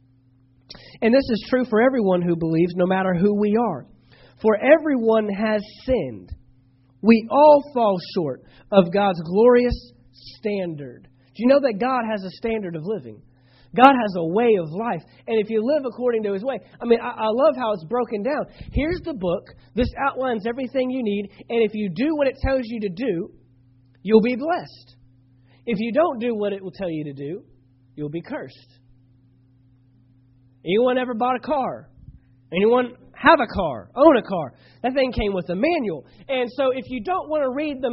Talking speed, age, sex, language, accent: 190 wpm, 40-59, male, English, American